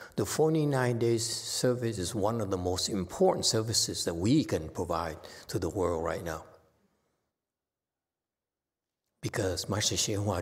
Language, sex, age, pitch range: English, male, 60-79, 95-135 Hz